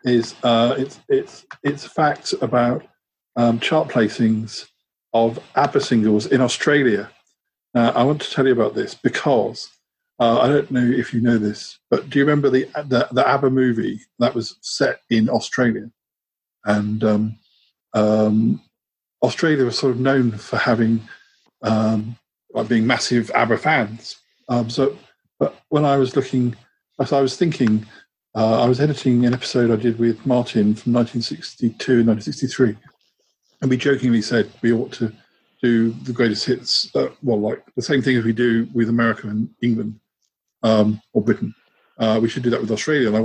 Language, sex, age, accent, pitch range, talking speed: English, male, 50-69, British, 115-135 Hz, 170 wpm